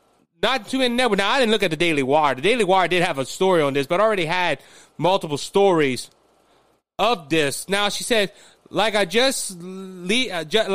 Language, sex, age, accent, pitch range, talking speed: English, male, 30-49, American, 180-230 Hz, 195 wpm